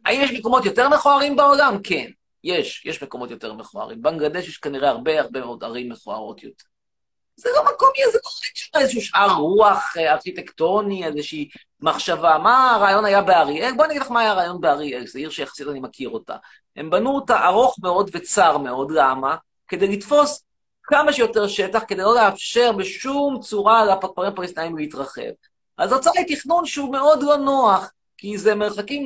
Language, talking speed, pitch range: Hebrew, 155 wpm, 180-270 Hz